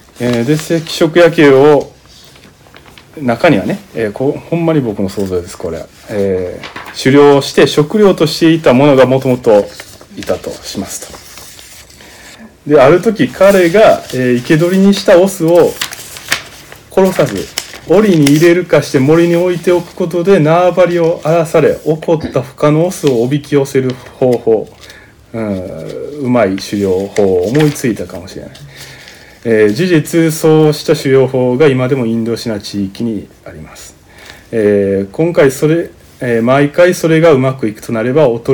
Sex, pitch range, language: male, 115-155 Hz, Japanese